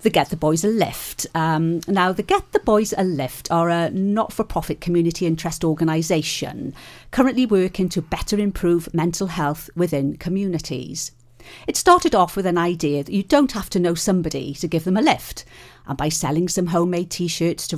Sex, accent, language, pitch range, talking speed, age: female, British, English, 150-185 Hz, 180 wpm, 40-59